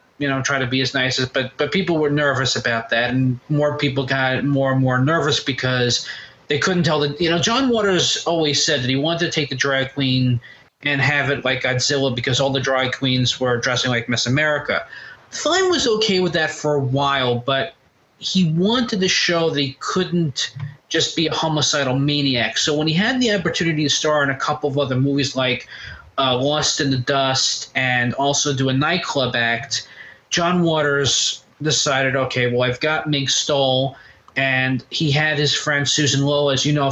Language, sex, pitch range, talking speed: English, male, 130-155 Hz, 200 wpm